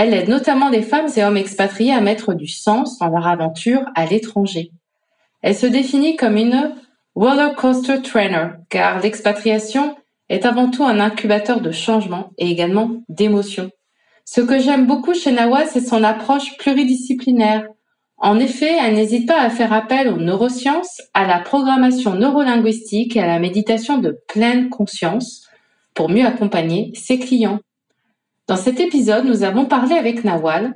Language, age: English, 30-49